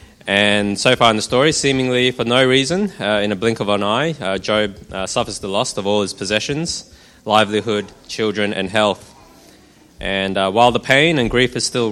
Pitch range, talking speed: 95-120 Hz, 200 wpm